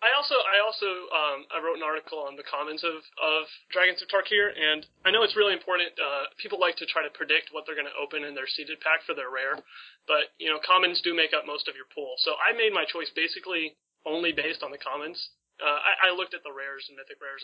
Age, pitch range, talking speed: 30-49, 145-185 Hz, 255 wpm